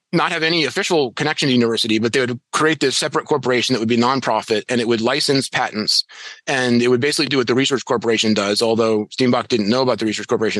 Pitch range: 115-135 Hz